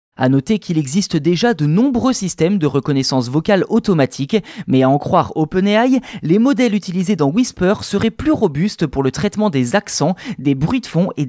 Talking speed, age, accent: 185 wpm, 20-39, French